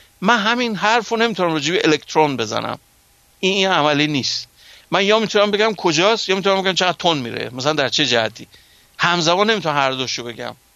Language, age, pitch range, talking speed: Persian, 60-79, 140-185 Hz, 180 wpm